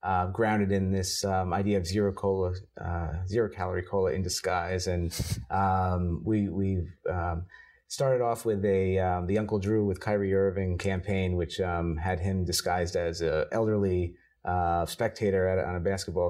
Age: 30-49